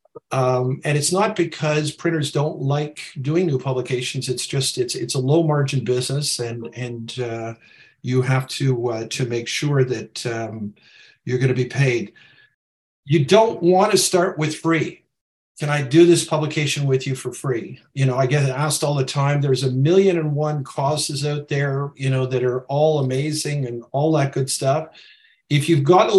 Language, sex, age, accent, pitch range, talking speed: English, male, 50-69, American, 130-160 Hz, 190 wpm